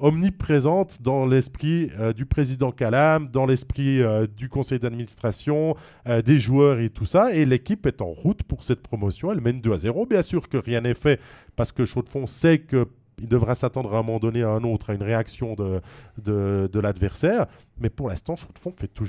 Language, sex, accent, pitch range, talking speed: French, male, French, 115-150 Hz, 205 wpm